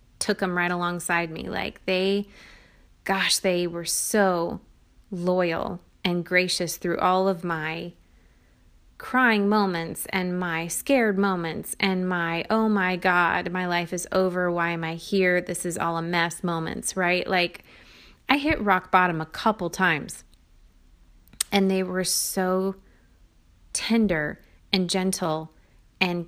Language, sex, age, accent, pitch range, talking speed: English, female, 20-39, American, 170-195 Hz, 135 wpm